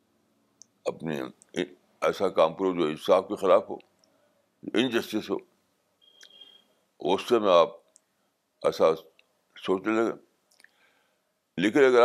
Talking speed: 110 wpm